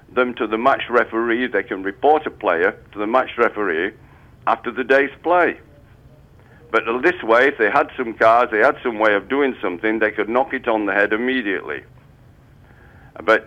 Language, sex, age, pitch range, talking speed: English, male, 60-79, 110-135 Hz, 185 wpm